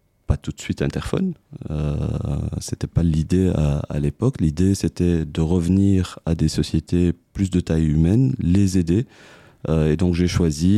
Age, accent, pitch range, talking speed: 30-49, French, 80-95 Hz, 175 wpm